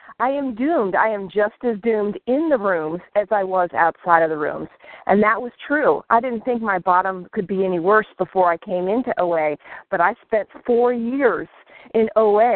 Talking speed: 205 wpm